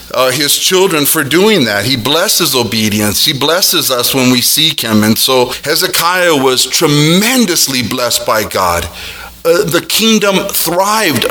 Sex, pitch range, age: male, 115-155 Hz, 40-59